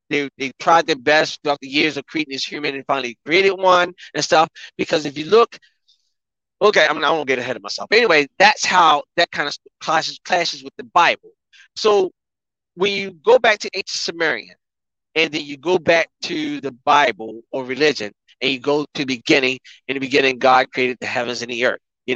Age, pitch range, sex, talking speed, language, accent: 30-49, 135-190 Hz, male, 210 wpm, English, American